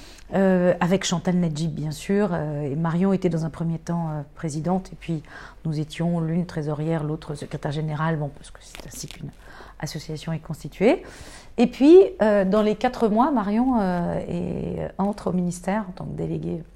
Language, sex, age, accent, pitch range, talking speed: French, female, 40-59, French, 165-210 Hz, 185 wpm